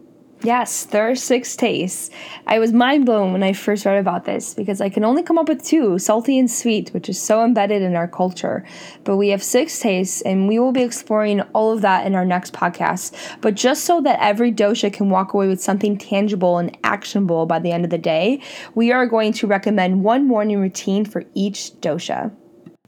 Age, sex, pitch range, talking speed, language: 10-29, female, 195-245 Hz, 215 wpm, English